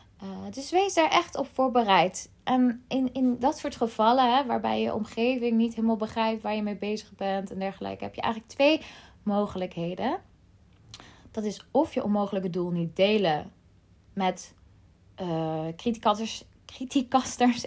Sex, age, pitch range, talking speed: female, 20-39, 195-245 Hz, 145 wpm